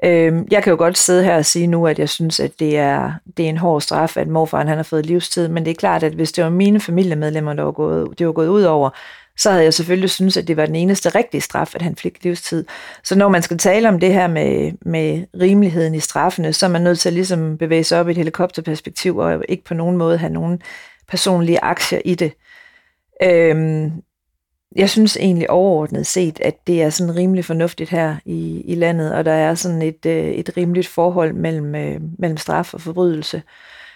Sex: female